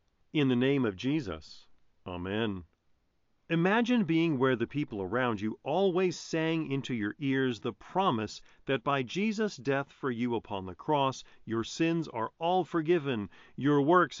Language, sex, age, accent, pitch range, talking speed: English, male, 50-69, American, 110-150 Hz, 150 wpm